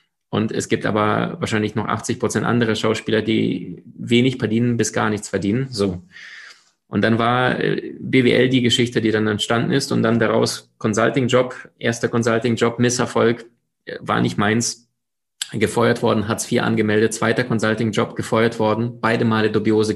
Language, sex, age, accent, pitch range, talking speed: German, male, 20-39, German, 110-120 Hz, 150 wpm